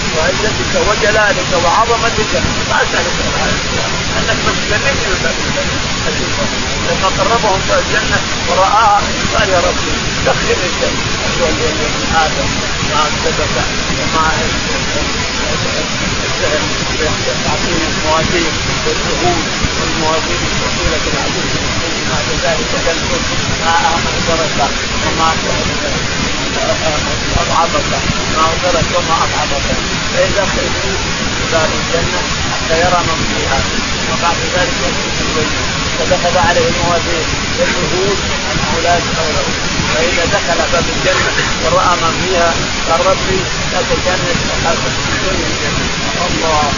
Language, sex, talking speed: Arabic, male, 70 wpm